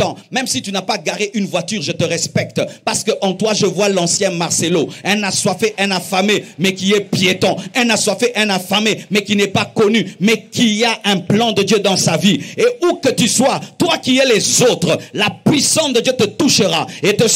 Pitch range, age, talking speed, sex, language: 200-275 Hz, 50-69, 220 wpm, male, French